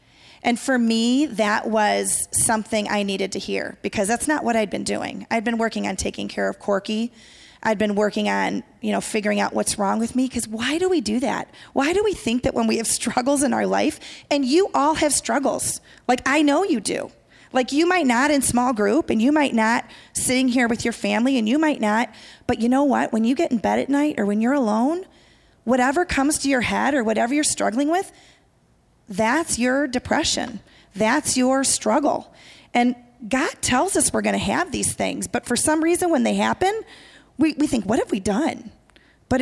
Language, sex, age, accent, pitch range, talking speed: English, female, 30-49, American, 220-275 Hz, 215 wpm